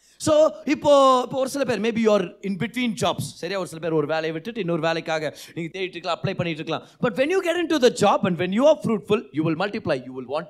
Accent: native